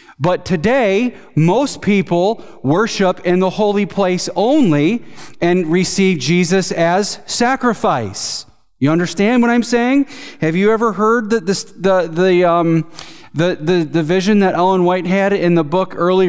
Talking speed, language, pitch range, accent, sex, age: 150 wpm, English, 170-200 Hz, American, male, 40-59